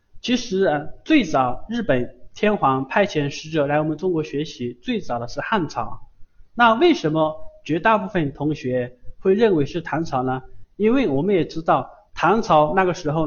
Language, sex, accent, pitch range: Chinese, male, native, 130-185 Hz